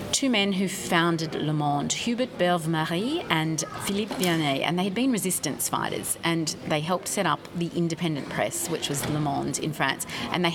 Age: 30-49